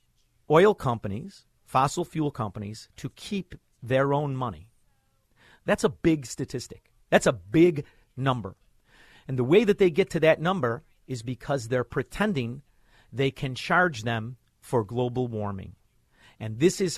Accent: American